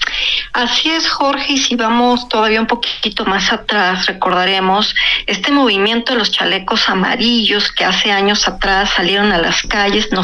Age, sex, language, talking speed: 40-59, female, Spanish, 160 wpm